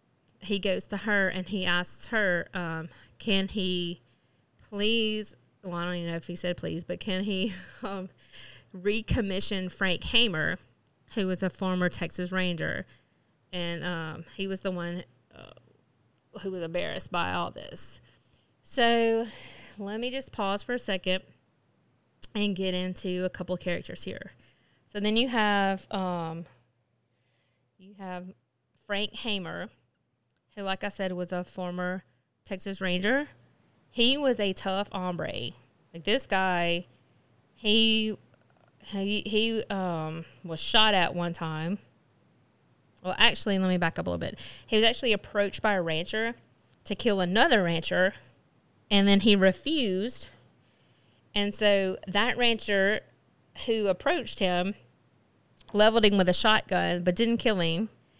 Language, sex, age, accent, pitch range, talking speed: English, female, 20-39, American, 175-210 Hz, 140 wpm